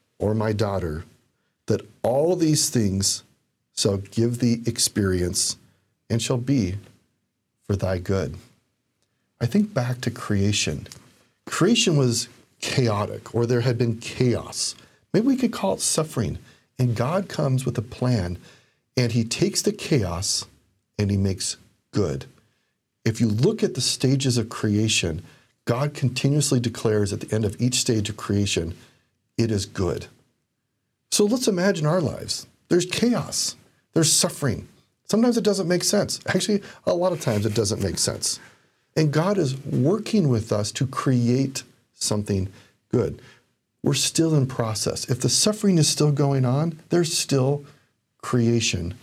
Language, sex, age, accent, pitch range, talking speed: English, male, 40-59, American, 105-145 Hz, 145 wpm